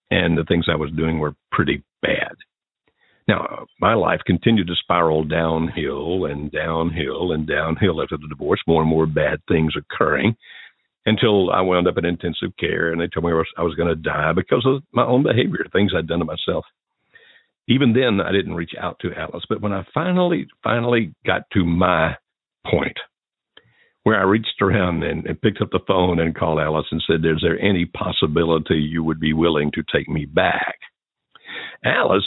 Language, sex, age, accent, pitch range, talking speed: English, male, 60-79, American, 80-115 Hz, 185 wpm